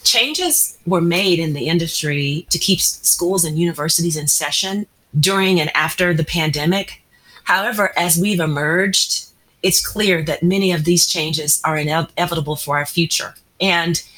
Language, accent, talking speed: English, American, 150 wpm